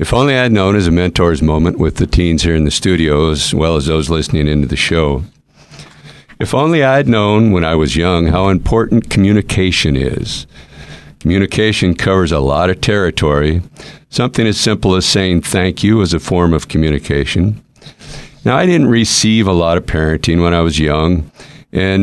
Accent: American